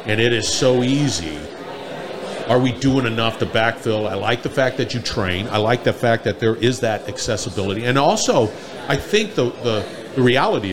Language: English